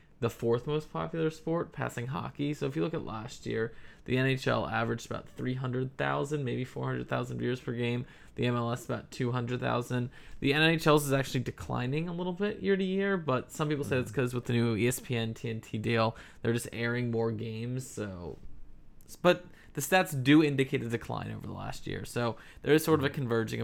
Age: 20-39